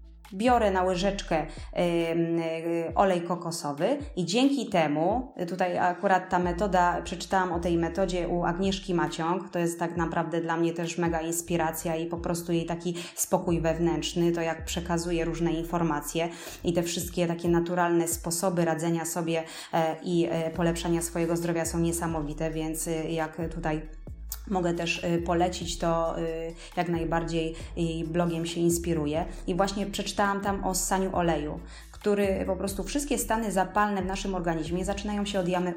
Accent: native